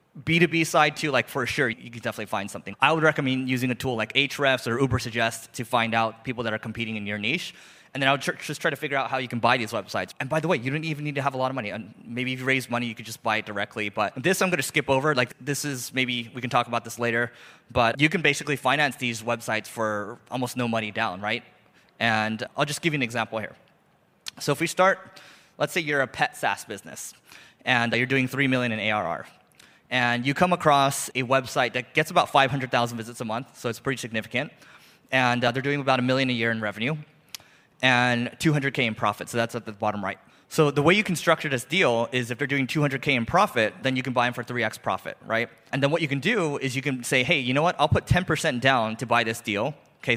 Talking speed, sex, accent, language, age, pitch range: 255 wpm, male, American, English, 20-39, 115-140 Hz